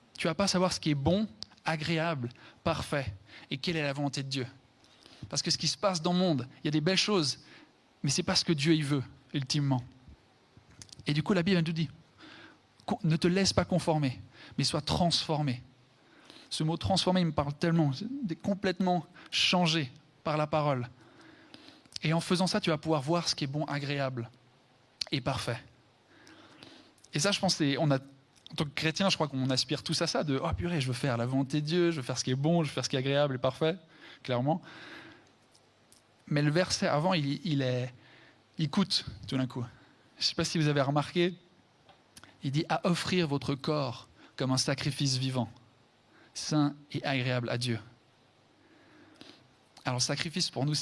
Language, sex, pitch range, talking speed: French, male, 130-165 Hz, 205 wpm